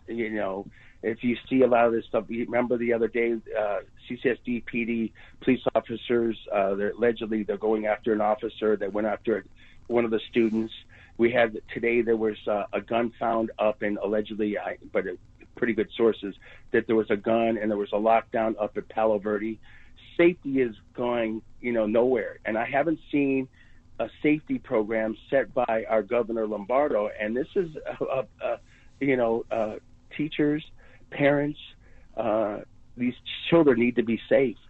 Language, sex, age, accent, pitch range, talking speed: English, male, 50-69, American, 110-125 Hz, 180 wpm